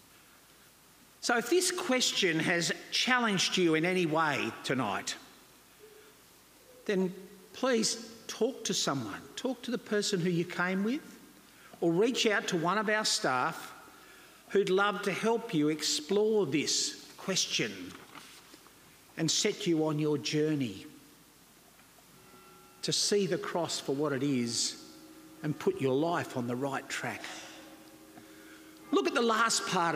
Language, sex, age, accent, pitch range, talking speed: English, male, 50-69, Australian, 165-230 Hz, 135 wpm